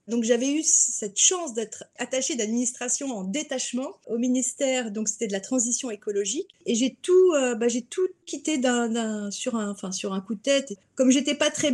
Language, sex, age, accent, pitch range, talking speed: French, female, 30-49, French, 235-290 Hz, 200 wpm